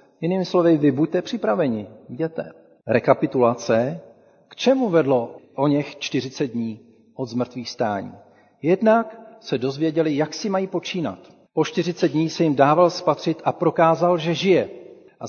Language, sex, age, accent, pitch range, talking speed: Czech, male, 40-59, native, 130-175 Hz, 140 wpm